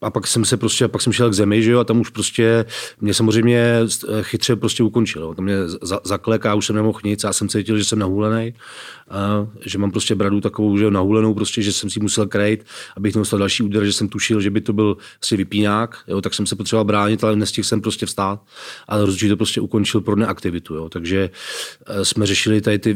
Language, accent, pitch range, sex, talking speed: Czech, native, 100-110 Hz, male, 230 wpm